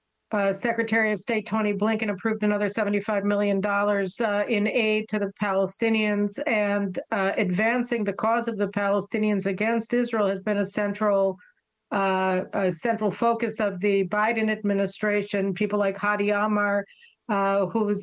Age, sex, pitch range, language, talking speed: 50-69, female, 200-215 Hz, English, 145 wpm